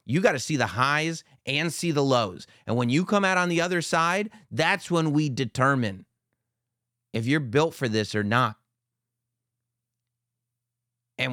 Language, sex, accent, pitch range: English, male, American, 110-140 Hz